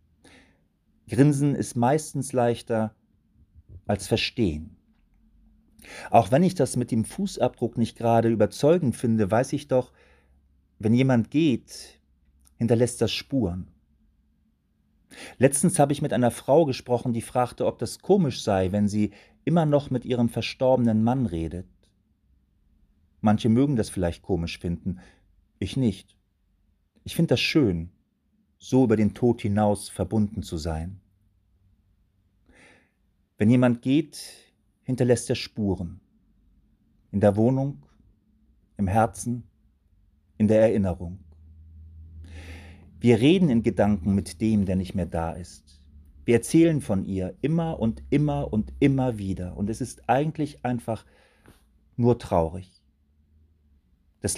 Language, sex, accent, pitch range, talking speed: German, male, German, 85-120 Hz, 120 wpm